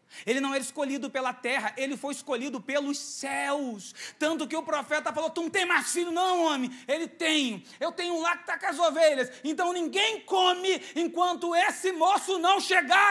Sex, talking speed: male, 190 wpm